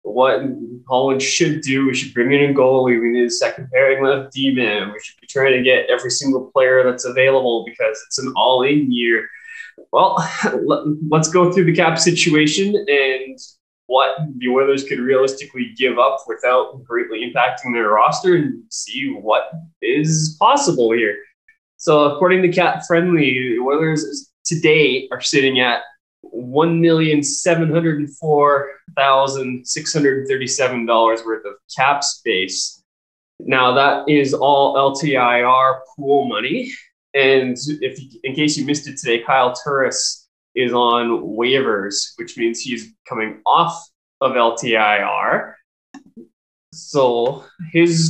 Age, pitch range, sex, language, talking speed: 20-39, 125-165 Hz, male, English, 130 wpm